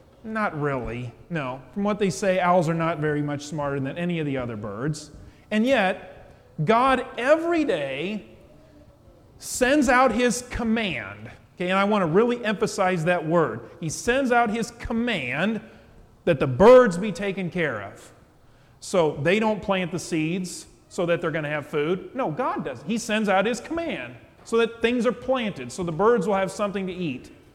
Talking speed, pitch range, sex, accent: 180 wpm, 145-215 Hz, male, American